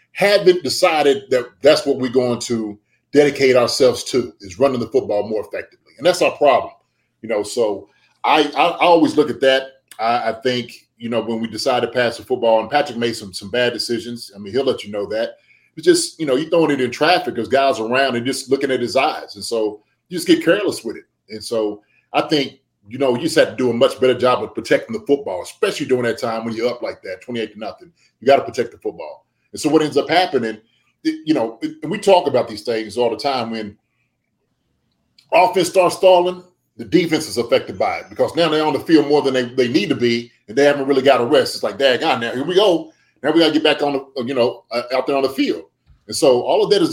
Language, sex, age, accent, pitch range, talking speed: English, male, 30-49, American, 120-180 Hz, 245 wpm